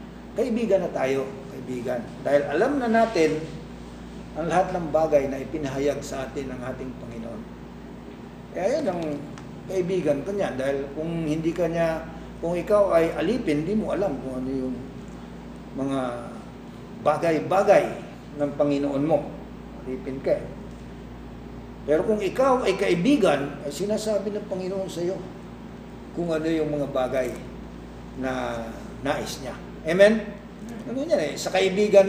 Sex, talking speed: male, 130 wpm